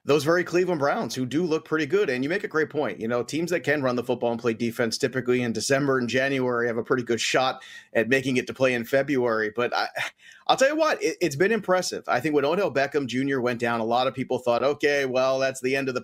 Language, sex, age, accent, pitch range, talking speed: English, male, 30-49, American, 135-185 Hz, 265 wpm